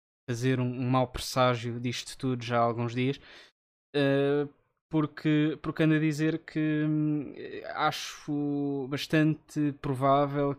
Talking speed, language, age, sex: 110 wpm, Portuguese, 20-39, male